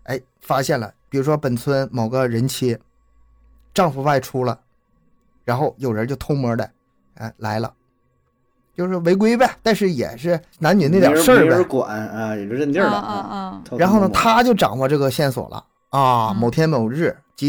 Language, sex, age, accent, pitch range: Chinese, male, 30-49, native, 120-170 Hz